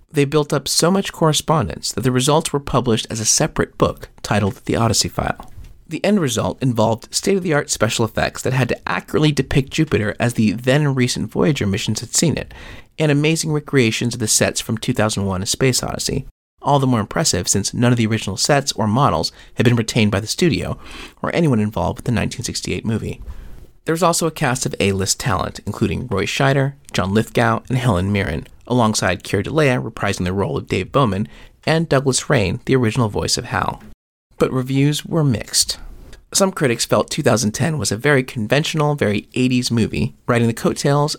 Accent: American